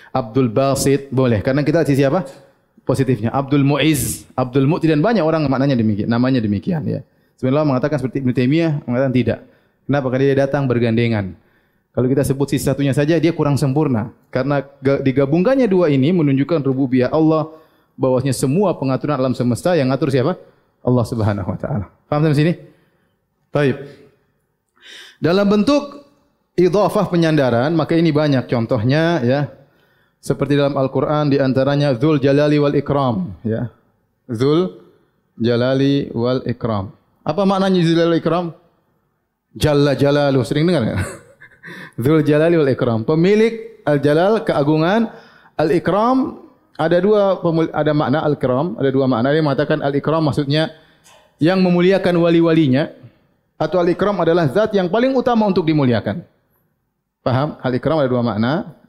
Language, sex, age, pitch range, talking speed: Indonesian, male, 20-39, 130-165 Hz, 140 wpm